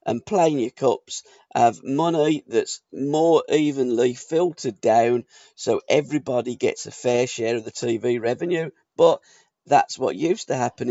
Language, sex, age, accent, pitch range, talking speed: English, male, 40-59, British, 125-170 Hz, 150 wpm